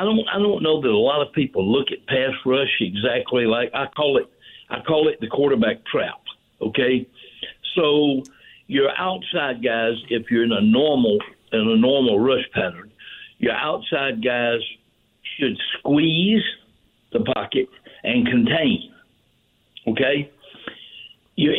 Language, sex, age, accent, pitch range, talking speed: English, male, 60-79, American, 135-205 Hz, 140 wpm